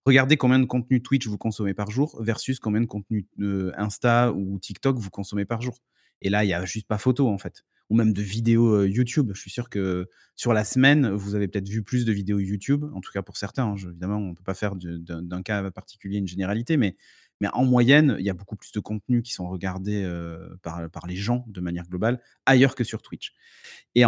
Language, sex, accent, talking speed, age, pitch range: French, male, French, 245 wpm, 30-49, 105-135 Hz